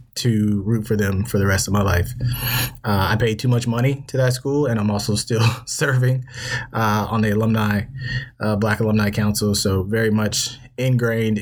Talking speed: 190 wpm